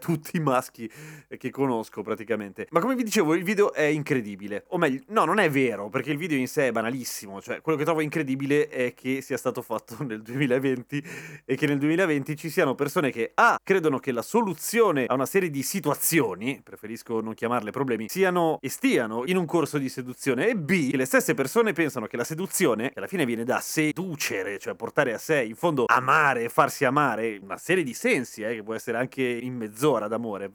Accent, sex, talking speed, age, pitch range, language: native, male, 205 wpm, 30-49, 125-165 Hz, Italian